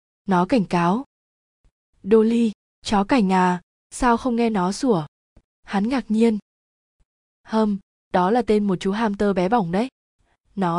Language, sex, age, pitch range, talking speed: Vietnamese, female, 20-39, 185-225 Hz, 150 wpm